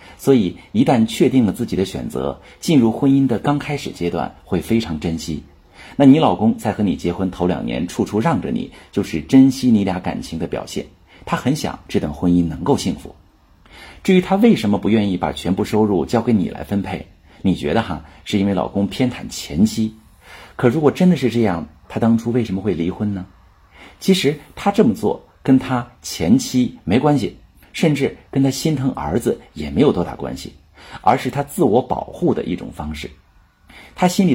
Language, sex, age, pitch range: Chinese, male, 50-69, 80-120 Hz